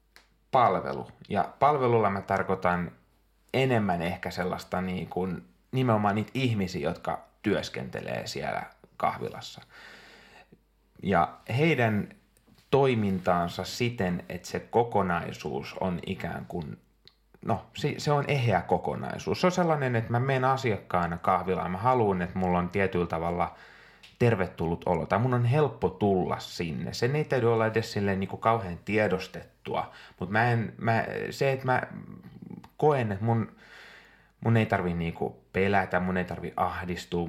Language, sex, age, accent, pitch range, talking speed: Finnish, male, 30-49, native, 90-115 Hz, 125 wpm